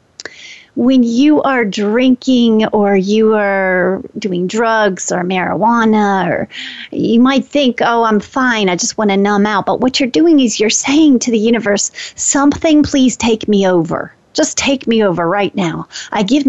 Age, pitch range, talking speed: 40-59, 195-250 Hz, 170 wpm